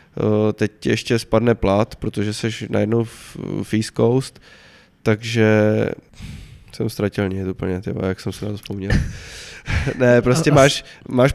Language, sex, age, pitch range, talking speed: Czech, male, 20-39, 105-120 Hz, 140 wpm